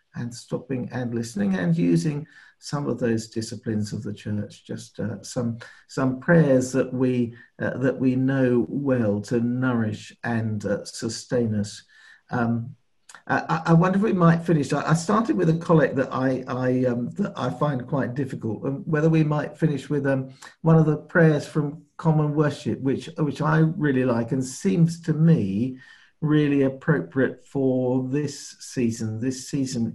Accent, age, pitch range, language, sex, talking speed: British, 50-69, 110-145 Hz, English, male, 165 wpm